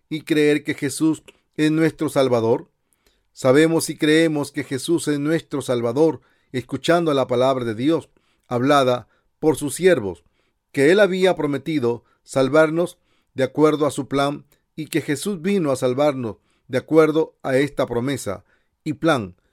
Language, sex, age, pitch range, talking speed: English, male, 40-59, 125-155 Hz, 145 wpm